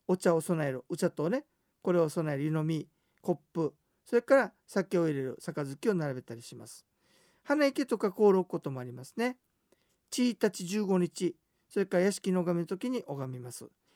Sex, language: male, Japanese